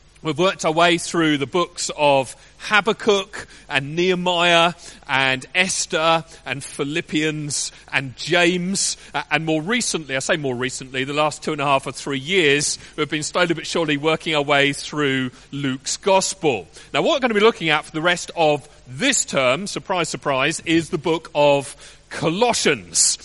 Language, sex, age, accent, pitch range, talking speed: English, male, 40-59, British, 150-185 Hz, 170 wpm